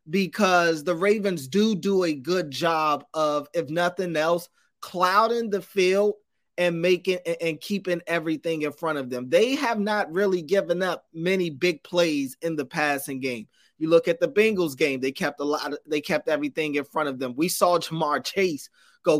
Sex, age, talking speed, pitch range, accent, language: male, 20-39, 190 wpm, 165-200 Hz, American, English